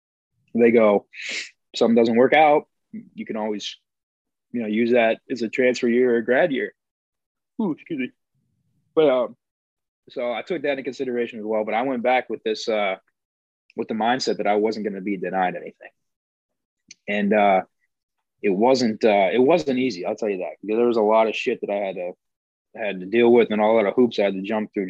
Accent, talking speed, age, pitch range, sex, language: American, 210 wpm, 20-39, 105-125 Hz, male, English